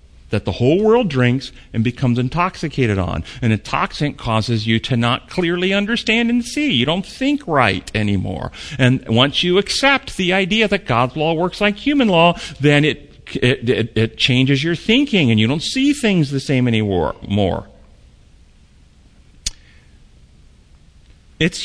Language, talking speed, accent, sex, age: English, 145 wpm, American, male, 40-59